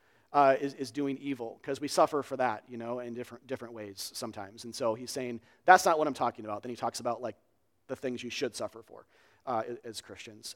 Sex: male